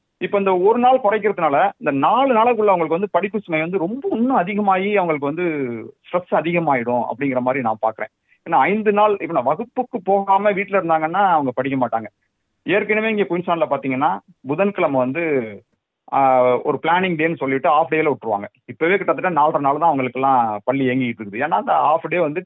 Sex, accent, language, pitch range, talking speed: male, native, Tamil, 130-190 Hz, 170 wpm